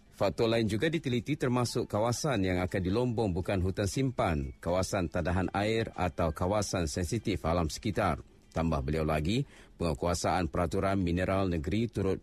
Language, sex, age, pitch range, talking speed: Malay, male, 50-69, 90-110 Hz, 135 wpm